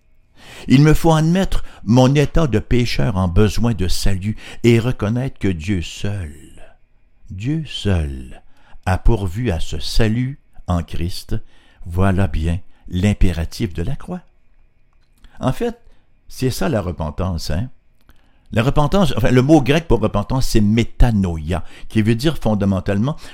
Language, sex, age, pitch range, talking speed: French, male, 60-79, 90-125 Hz, 135 wpm